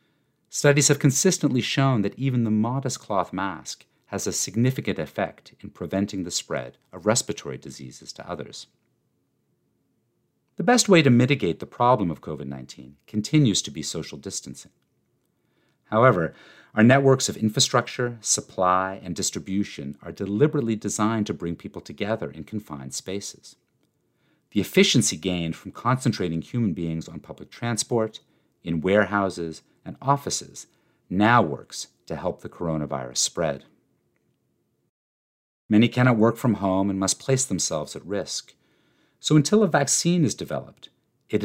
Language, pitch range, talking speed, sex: English, 85-130 Hz, 135 wpm, male